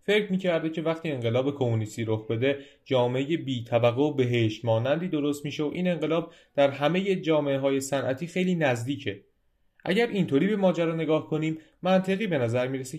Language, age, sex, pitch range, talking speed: Persian, 30-49, male, 125-150 Hz, 165 wpm